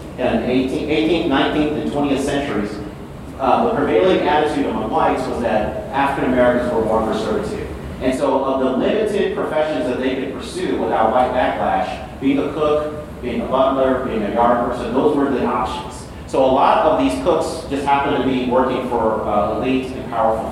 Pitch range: 115-150 Hz